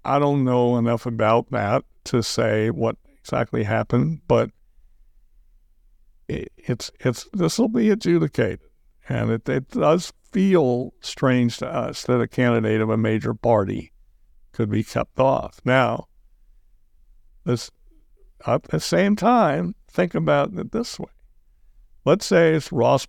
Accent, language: American, English